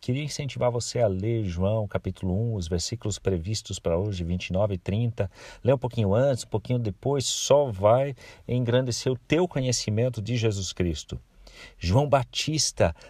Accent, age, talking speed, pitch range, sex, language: Brazilian, 50-69, 155 wpm, 85-120 Hz, male, Portuguese